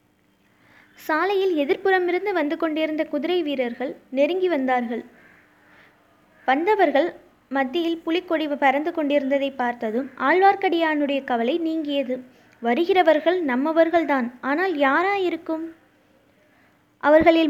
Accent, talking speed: native, 80 wpm